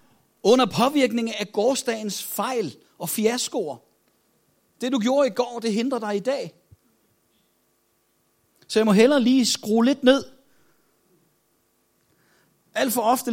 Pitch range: 150-240 Hz